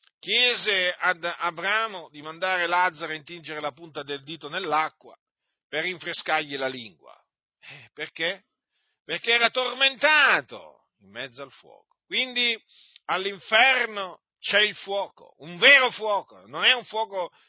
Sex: male